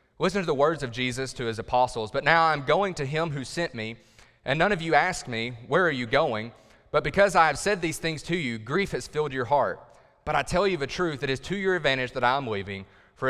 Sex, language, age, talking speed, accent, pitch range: male, English, 30-49, 255 wpm, American, 110-145 Hz